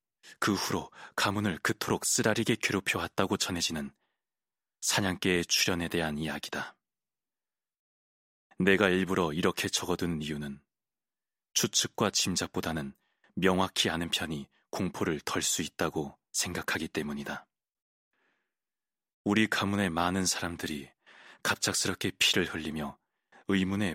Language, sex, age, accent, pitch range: Korean, male, 30-49, native, 75-100 Hz